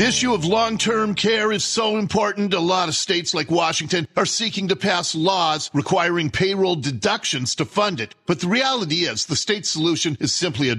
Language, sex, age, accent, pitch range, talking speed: English, male, 50-69, American, 145-205 Hz, 195 wpm